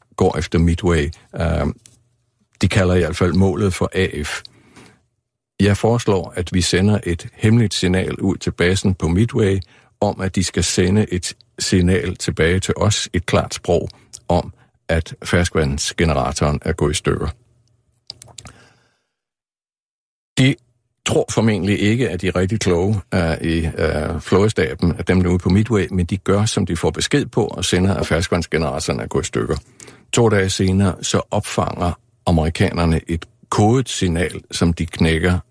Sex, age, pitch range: male, 50-69, 85-110 Hz